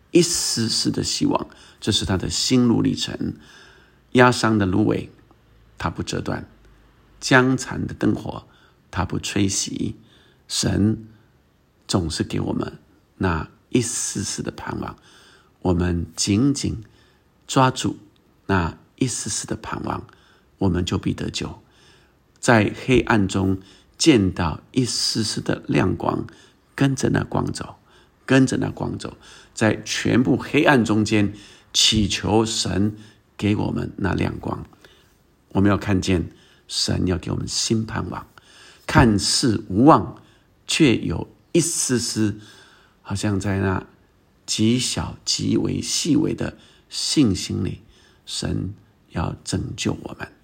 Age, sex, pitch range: 50-69, male, 95-120 Hz